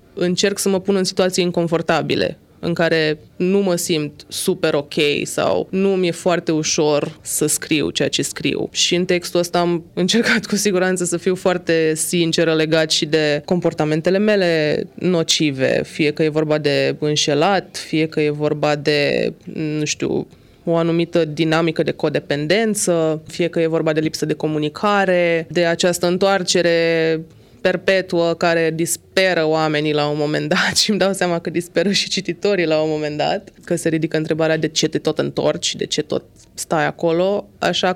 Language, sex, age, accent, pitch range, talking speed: Romanian, female, 20-39, native, 160-185 Hz, 170 wpm